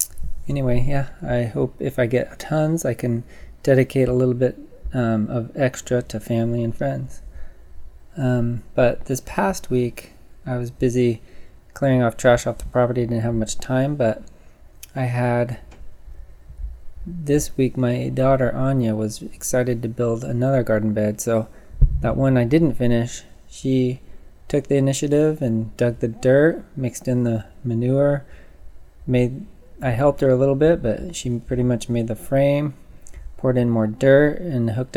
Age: 20-39